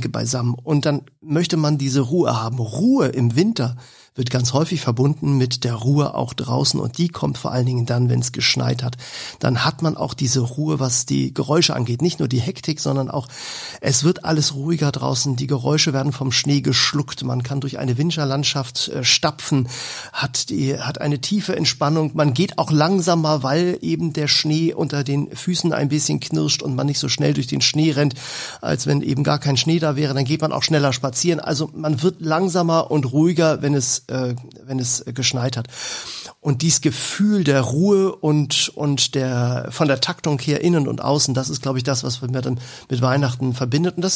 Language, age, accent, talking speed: German, 40-59, German, 200 wpm